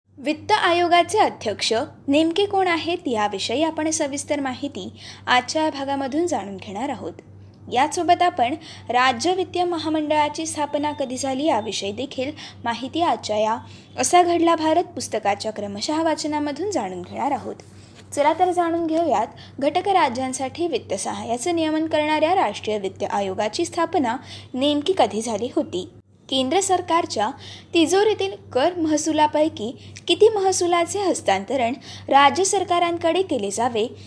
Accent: native